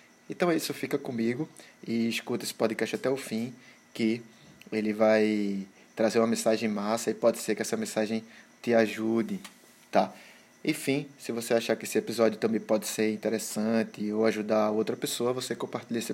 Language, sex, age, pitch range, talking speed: Portuguese, male, 20-39, 110-125 Hz, 170 wpm